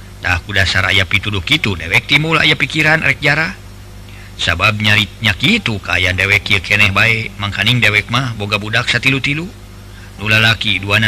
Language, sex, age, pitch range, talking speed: Indonesian, male, 50-69, 100-135 Hz, 155 wpm